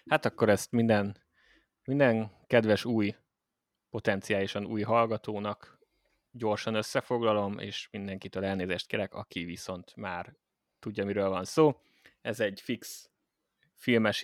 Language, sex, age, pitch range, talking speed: Hungarian, male, 20-39, 100-115 Hz, 115 wpm